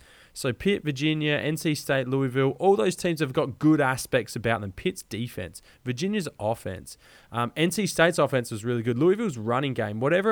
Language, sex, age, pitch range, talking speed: English, male, 20-39, 125-160 Hz, 175 wpm